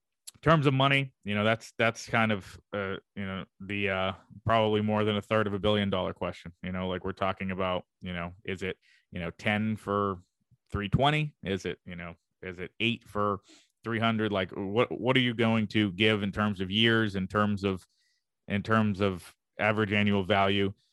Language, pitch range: English, 95-110 Hz